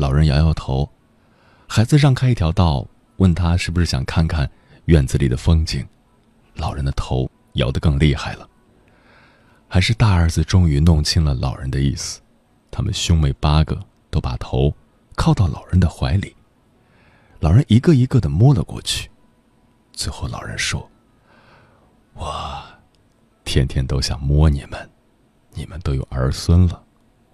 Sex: male